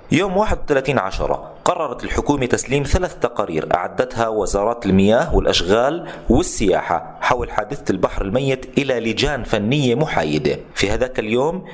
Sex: male